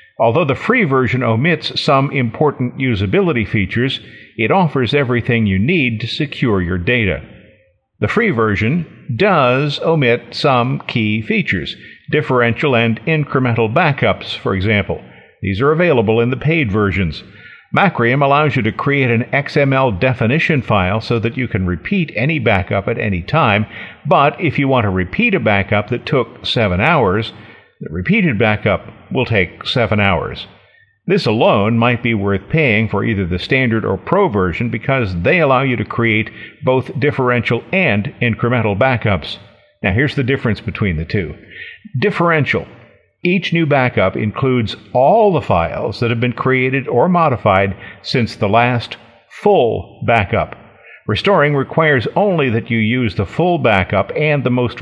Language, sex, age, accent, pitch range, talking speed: English, male, 50-69, American, 105-140 Hz, 150 wpm